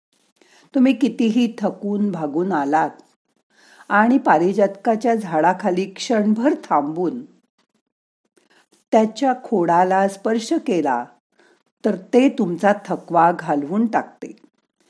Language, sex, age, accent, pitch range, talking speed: Marathi, female, 50-69, native, 180-250 Hz, 80 wpm